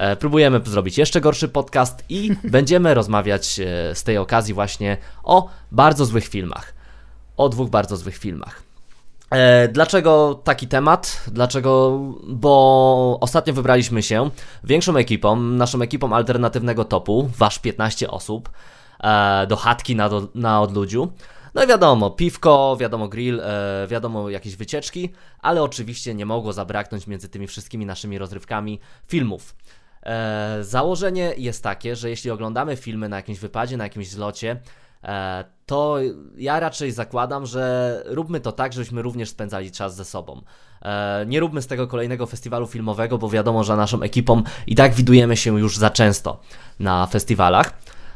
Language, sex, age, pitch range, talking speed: Polish, male, 20-39, 105-130 Hz, 135 wpm